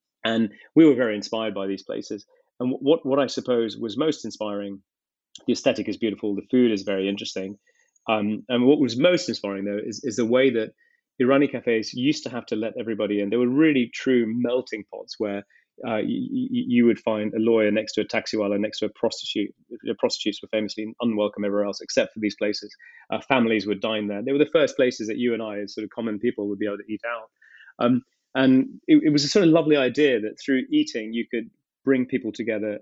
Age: 30-49